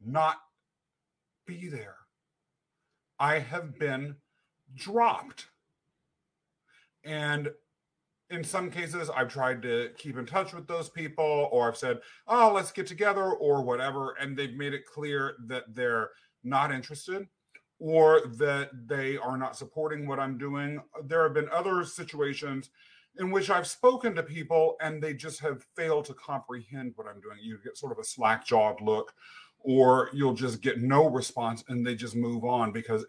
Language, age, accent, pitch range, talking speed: English, 40-59, American, 130-165 Hz, 160 wpm